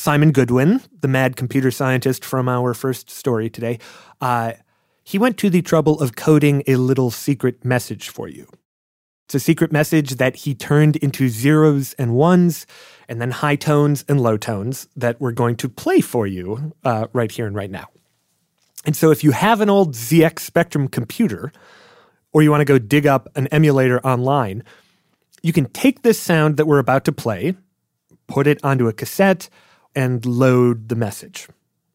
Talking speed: 180 wpm